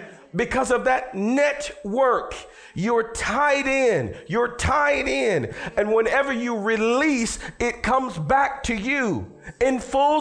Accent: American